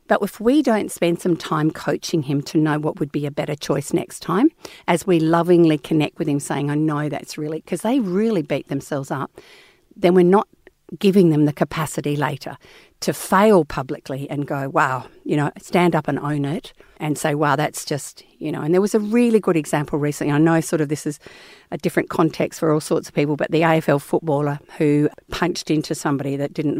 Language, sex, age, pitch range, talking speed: English, female, 50-69, 150-190 Hz, 215 wpm